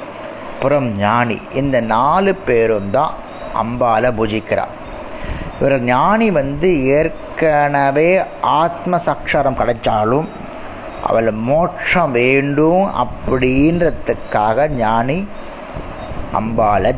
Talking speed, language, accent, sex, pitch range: 75 wpm, Tamil, native, male, 115-155 Hz